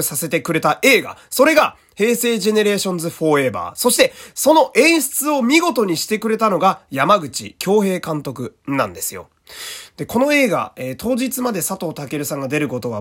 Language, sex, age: Japanese, male, 20-39